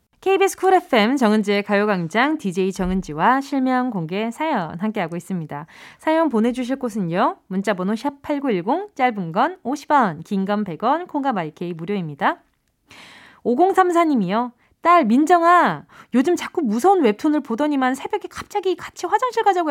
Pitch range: 200-320 Hz